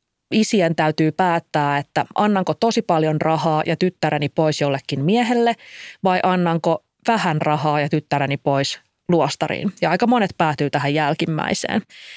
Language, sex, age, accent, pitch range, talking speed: Finnish, female, 20-39, native, 155-205 Hz, 135 wpm